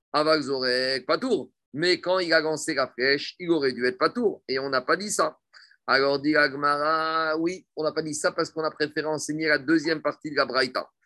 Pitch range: 150-170 Hz